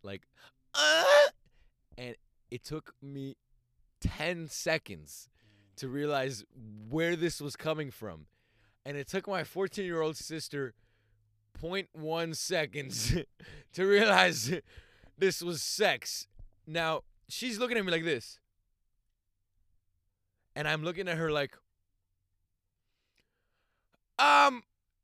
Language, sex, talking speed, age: English, male, 100 wpm, 20-39